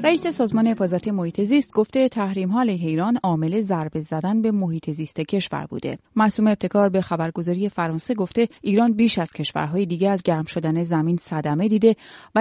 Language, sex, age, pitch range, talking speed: Persian, female, 30-49, 165-220 Hz, 165 wpm